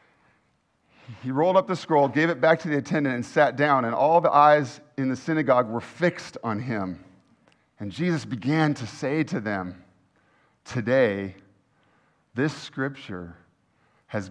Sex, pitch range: male, 100-145 Hz